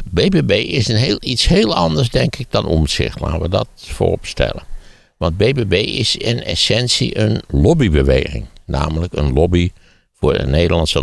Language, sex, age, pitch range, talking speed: Dutch, male, 60-79, 65-85 Hz, 160 wpm